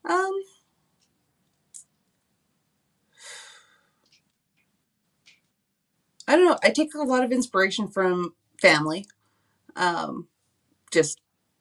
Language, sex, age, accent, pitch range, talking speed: English, female, 30-49, American, 170-225 Hz, 70 wpm